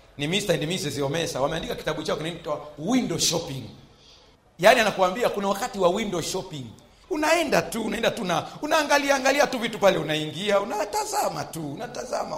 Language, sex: Swahili, male